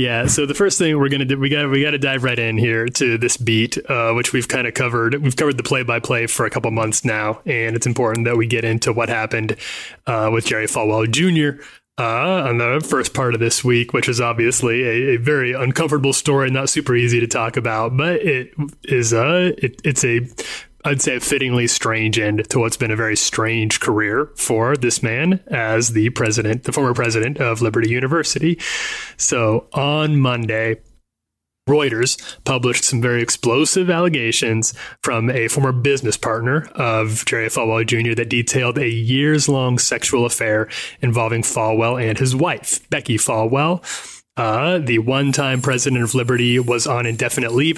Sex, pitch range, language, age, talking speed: male, 115-145 Hz, English, 30-49, 185 wpm